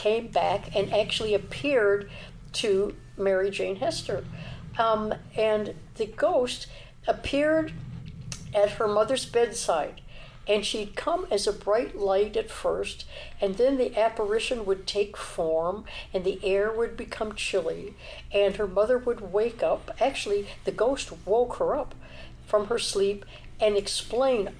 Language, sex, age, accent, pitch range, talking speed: English, female, 60-79, American, 195-235 Hz, 140 wpm